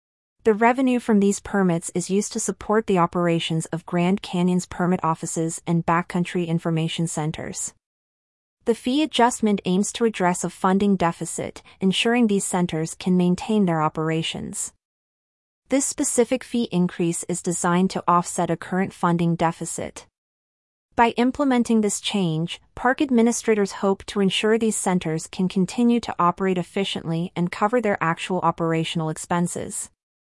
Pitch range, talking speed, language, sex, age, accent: 170-215 Hz, 140 wpm, English, female, 30-49, American